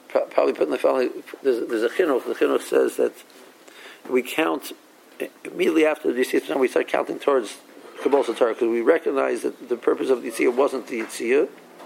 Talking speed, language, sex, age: 190 wpm, English, male, 50-69